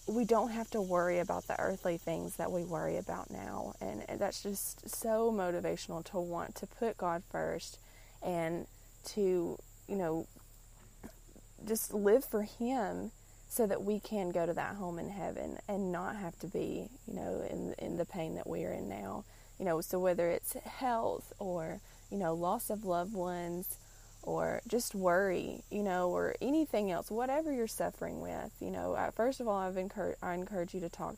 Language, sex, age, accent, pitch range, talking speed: English, female, 20-39, American, 165-205 Hz, 185 wpm